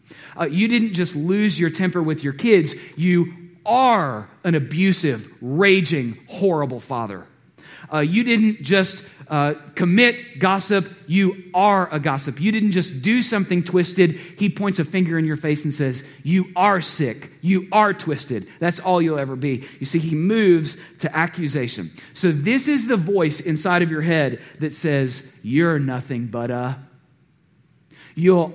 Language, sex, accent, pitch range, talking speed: English, male, American, 140-185 Hz, 160 wpm